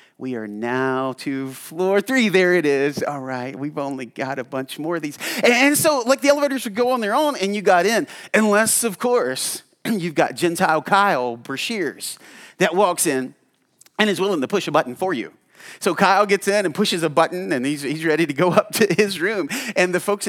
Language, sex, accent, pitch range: English, male, American, 165-250 Hz